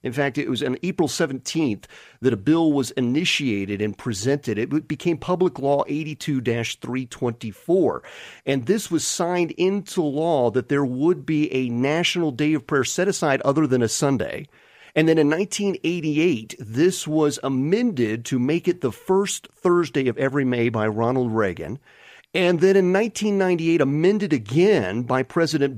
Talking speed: 155 wpm